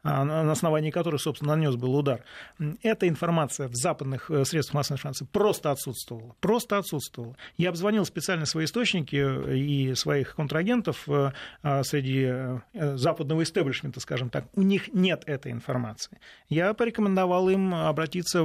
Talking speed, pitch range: 130 wpm, 140-180 Hz